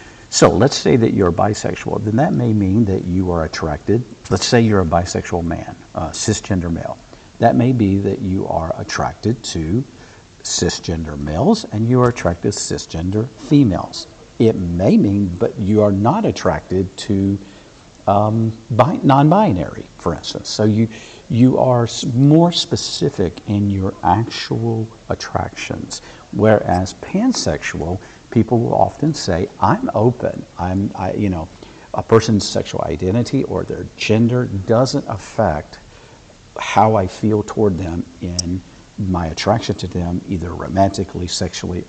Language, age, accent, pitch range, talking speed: English, 50-69, American, 95-115 Hz, 140 wpm